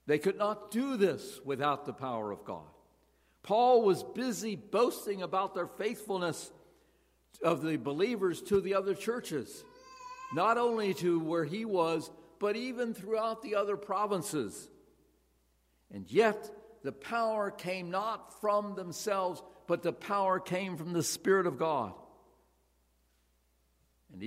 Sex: male